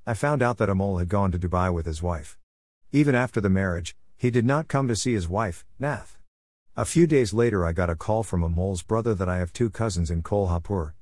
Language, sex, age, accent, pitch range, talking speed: Marathi, male, 50-69, American, 85-115 Hz, 235 wpm